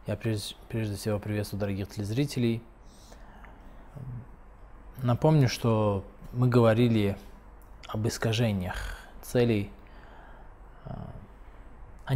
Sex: male